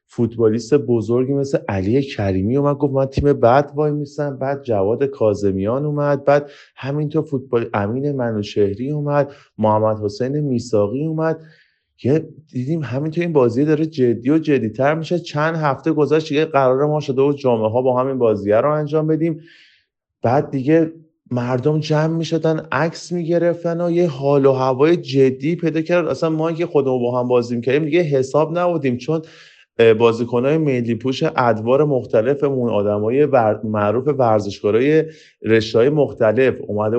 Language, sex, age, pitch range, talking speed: Persian, male, 30-49, 115-155 Hz, 150 wpm